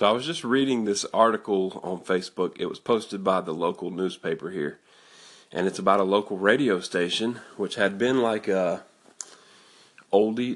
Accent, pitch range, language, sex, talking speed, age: American, 90-105 Hz, English, male, 170 wpm, 30-49